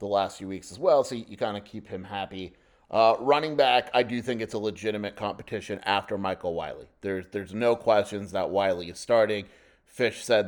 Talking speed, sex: 205 wpm, male